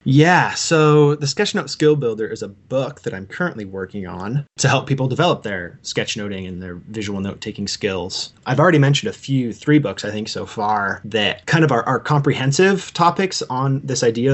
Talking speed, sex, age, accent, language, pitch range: 205 wpm, male, 20-39, American, English, 100-135 Hz